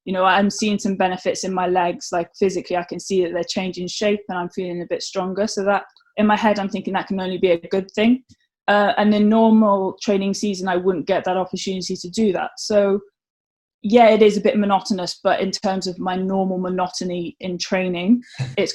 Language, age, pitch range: English, 20-39, 180-210 Hz